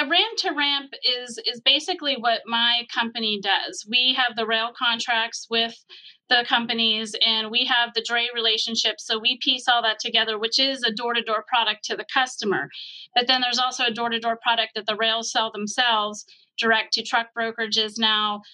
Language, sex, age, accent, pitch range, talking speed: English, female, 30-49, American, 215-240 Hz, 190 wpm